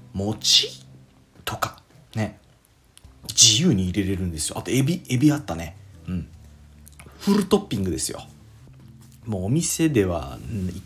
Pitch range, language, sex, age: 95-135 Hz, Japanese, male, 40-59